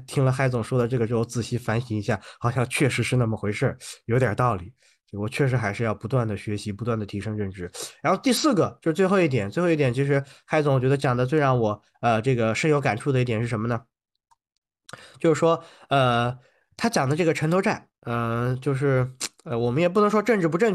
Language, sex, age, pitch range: Chinese, male, 20-39, 125-170 Hz